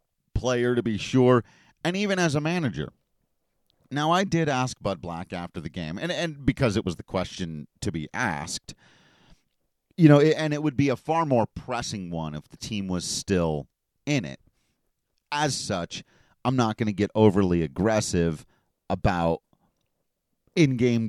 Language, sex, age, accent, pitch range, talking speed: English, male, 40-59, American, 100-125 Hz, 160 wpm